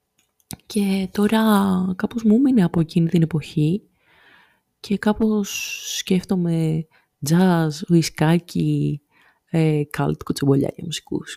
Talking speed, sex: 95 wpm, female